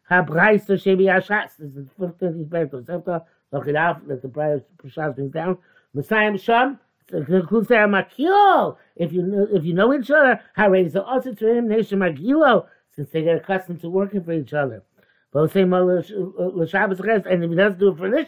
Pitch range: 165-220 Hz